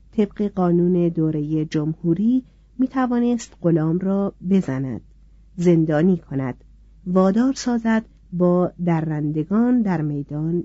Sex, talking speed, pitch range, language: female, 100 wpm, 160-225 Hz, Persian